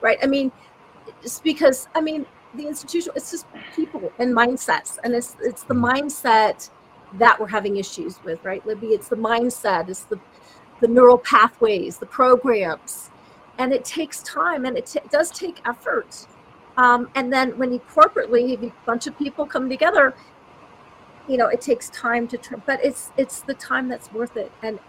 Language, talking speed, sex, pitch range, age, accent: English, 175 wpm, female, 220-270 Hz, 40-59, American